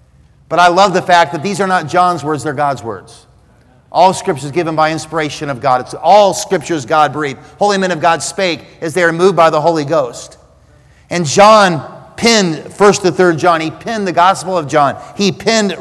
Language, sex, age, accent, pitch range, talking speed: English, male, 50-69, American, 165-200 Hz, 210 wpm